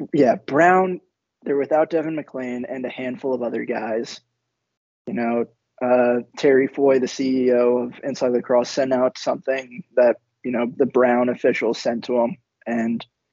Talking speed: 160 wpm